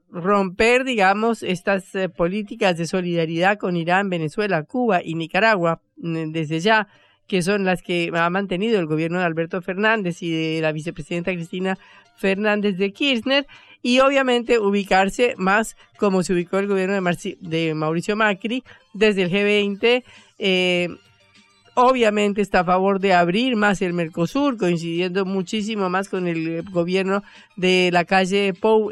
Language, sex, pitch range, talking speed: Spanish, female, 165-205 Hz, 145 wpm